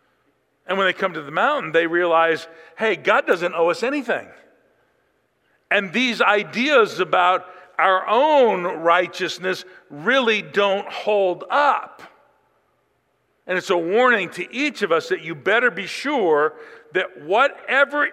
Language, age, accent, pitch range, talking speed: English, 50-69, American, 150-210 Hz, 135 wpm